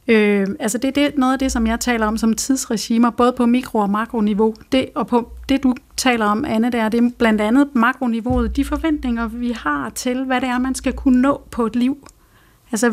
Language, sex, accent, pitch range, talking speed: Danish, female, native, 220-260 Hz, 230 wpm